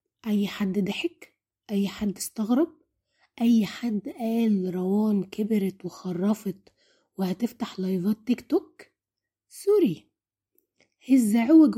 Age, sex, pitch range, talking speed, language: 20-39, female, 175-265 Hz, 90 wpm, Arabic